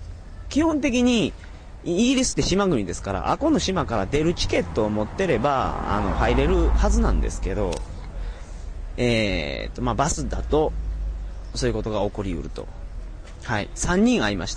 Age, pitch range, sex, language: 30-49, 90-145 Hz, male, Japanese